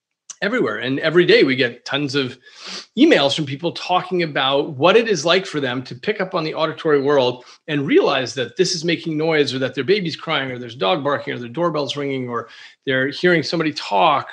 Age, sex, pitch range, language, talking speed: 40-59, male, 130-180 Hz, English, 215 wpm